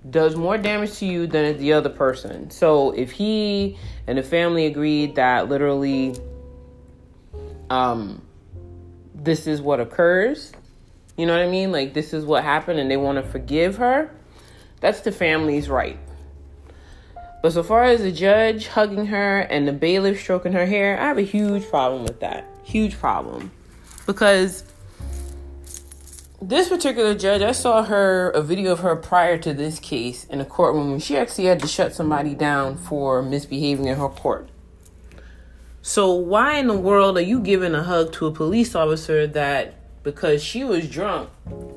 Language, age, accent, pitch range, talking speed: English, 30-49, American, 120-195 Hz, 165 wpm